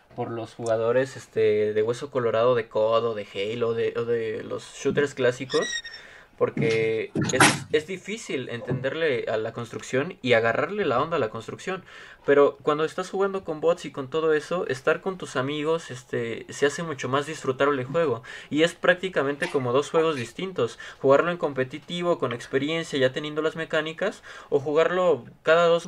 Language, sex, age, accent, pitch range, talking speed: Spanish, male, 20-39, Mexican, 130-195 Hz, 170 wpm